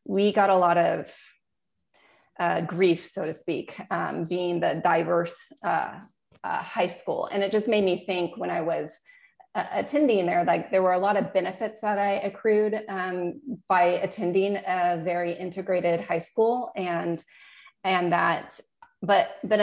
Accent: American